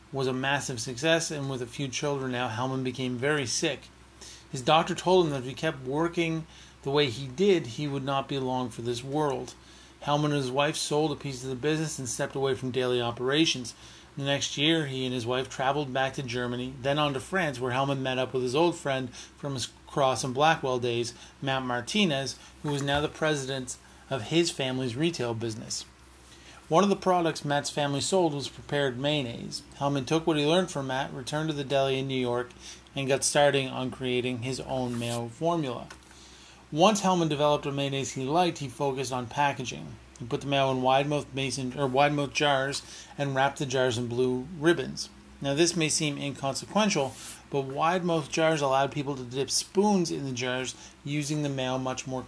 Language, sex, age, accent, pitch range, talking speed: English, male, 40-59, American, 130-150 Hz, 195 wpm